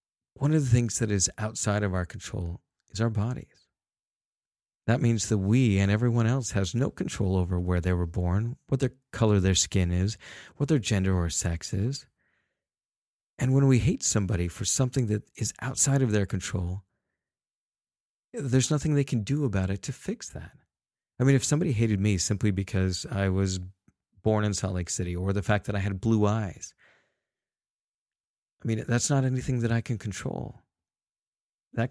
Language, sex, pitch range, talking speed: English, male, 95-115 Hz, 180 wpm